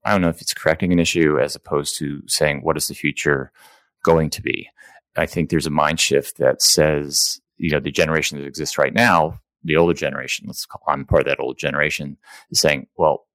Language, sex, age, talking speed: English, male, 30-49, 220 wpm